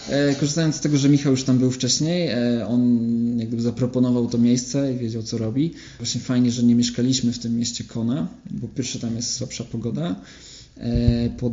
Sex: male